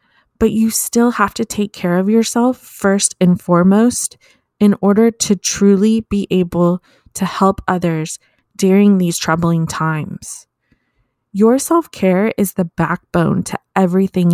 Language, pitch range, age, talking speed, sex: English, 175-225 Hz, 20-39, 135 wpm, female